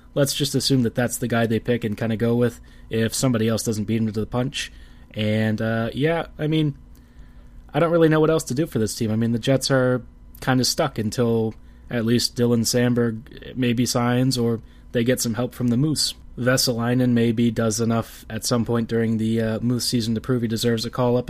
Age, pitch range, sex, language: 20-39, 110-130 Hz, male, English